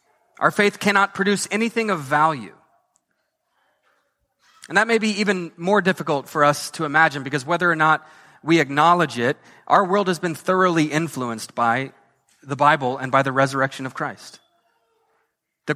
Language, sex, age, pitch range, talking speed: English, male, 30-49, 150-200 Hz, 155 wpm